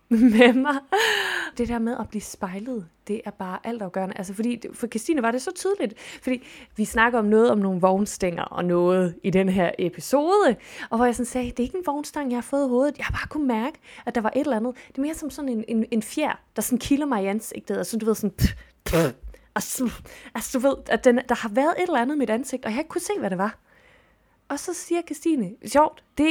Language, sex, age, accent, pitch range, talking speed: Danish, female, 20-39, native, 205-285 Hz, 245 wpm